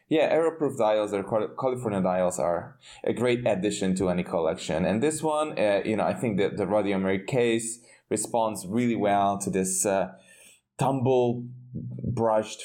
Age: 20-39